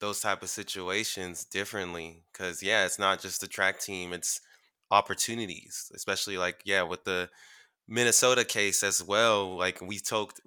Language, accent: English, American